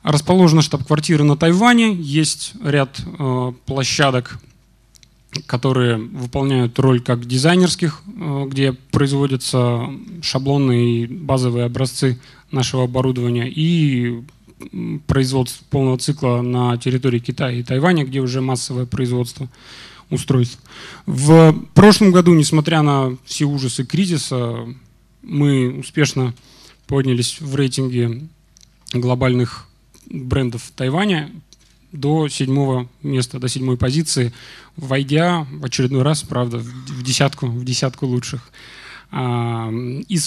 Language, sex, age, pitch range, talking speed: Russian, male, 20-39, 125-145 Hz, 105 wpm